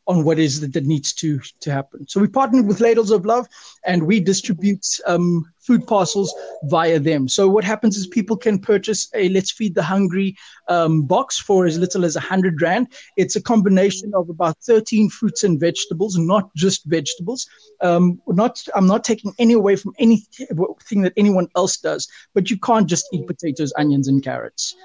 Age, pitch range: 30-49, 165-210 Hz